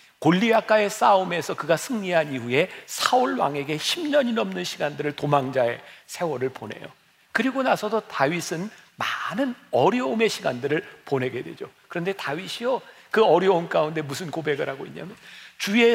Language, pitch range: Korean, 155-240 Hz